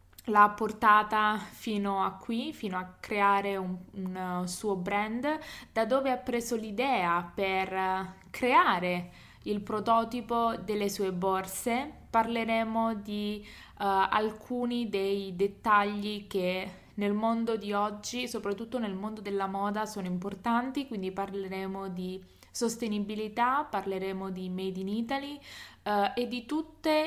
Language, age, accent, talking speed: Italian, 20-39, native, 115 wpm